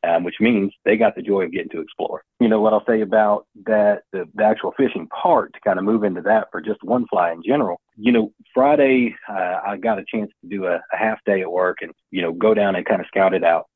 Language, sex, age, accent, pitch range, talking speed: English, male, 40-59, American, 95-110 Hz, 270 wpm